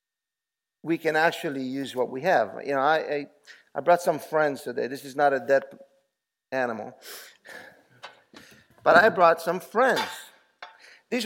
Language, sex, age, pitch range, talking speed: English, male, 50-69, 135-195 Hz, 150 wpm